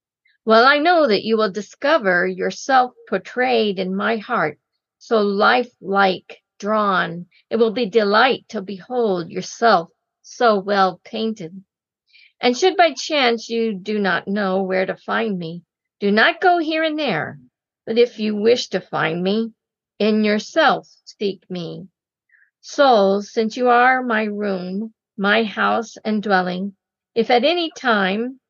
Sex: female